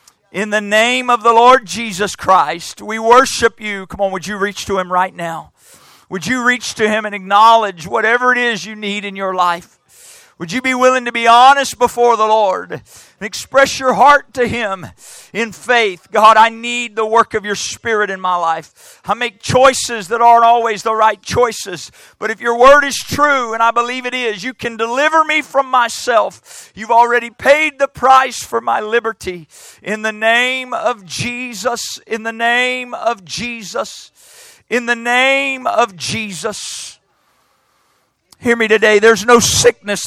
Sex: male